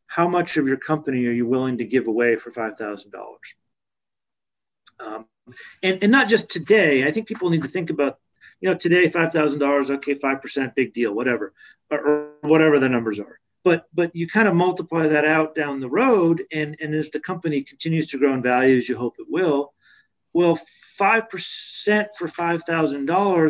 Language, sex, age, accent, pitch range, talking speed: English, male, 40-59, American, 125-165 Hz, 180 wpm